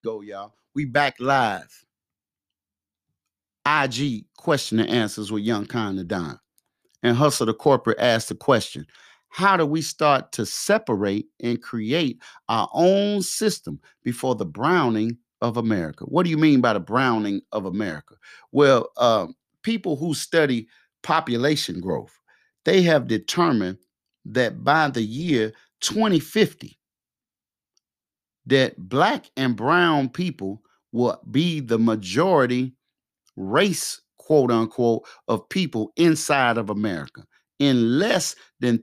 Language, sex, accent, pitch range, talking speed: English, male, American, 110-155 Hz, 125 wpm